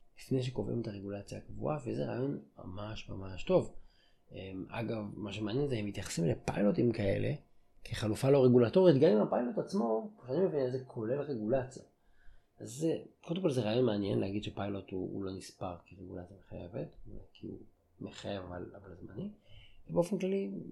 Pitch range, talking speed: 100-135 Hz, 150 wpm